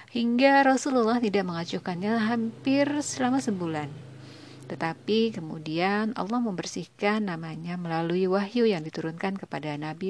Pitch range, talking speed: 165-225 Hz, 105 wpm